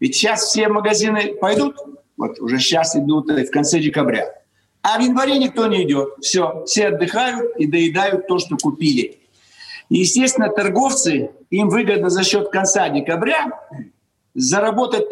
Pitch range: 175-255 Hz